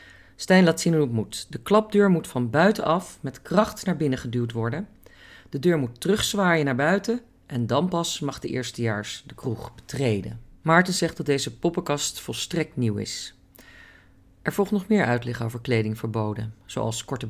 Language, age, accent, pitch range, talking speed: Dutch, 40-59, Dutch, 115-150 Hz, 170 wpm